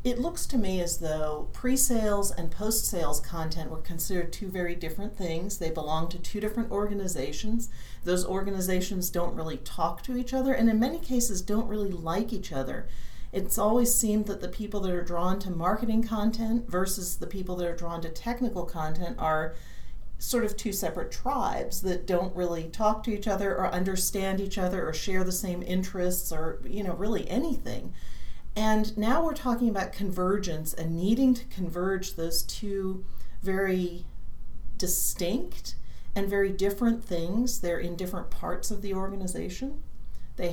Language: English